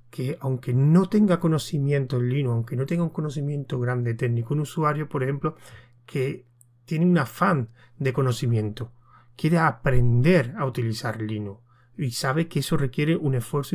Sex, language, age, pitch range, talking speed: male, Spanish, 30-49, 120-155 Hz, 155 wpm